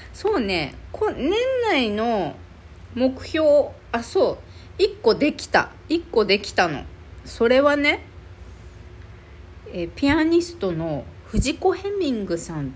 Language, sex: Japanese, female